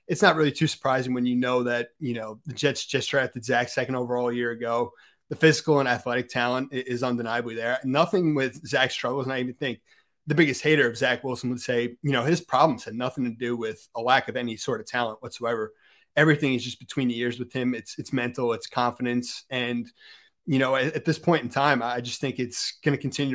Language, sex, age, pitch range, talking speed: English, male, 30-49, 120-140 Hz, 235 wpm